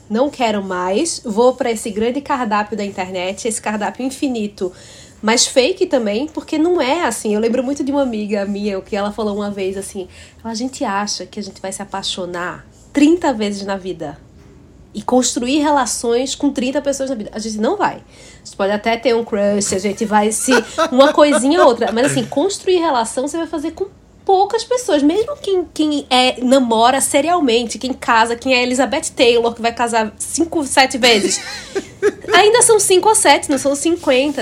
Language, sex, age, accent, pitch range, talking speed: Portuguese, female, 20-39, Brazilian, 210-295 Hz, 195 wpm